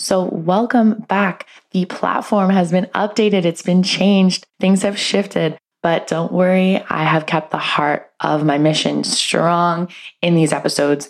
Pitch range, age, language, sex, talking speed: 150-185 Hz, 20-39, English, female, 155 wpm